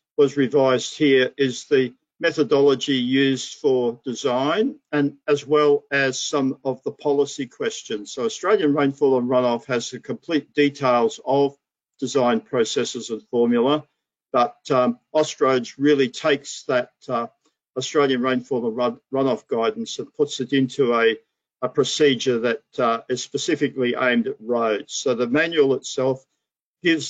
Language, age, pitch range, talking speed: English, 50-69, 125-150 Hz, 140 wpm